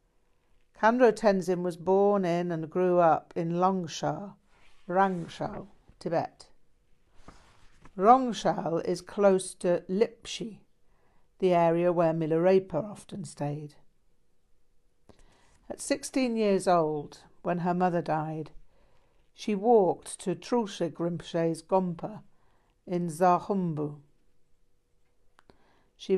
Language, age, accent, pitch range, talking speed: English, 60-79, British, 165-195 Hz, 90 wpm